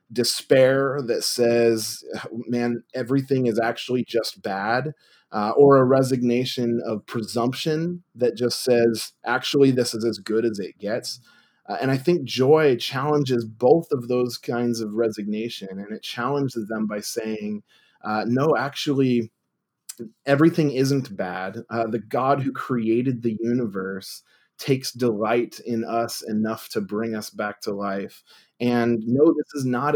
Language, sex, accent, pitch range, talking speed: English, male, American, 110-130 Hz, 145 wpm